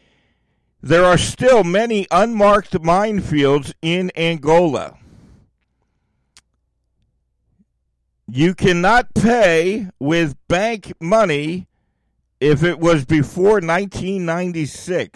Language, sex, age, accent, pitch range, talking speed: English, male, 50-69, American, 135-180 Hz, 75 wpm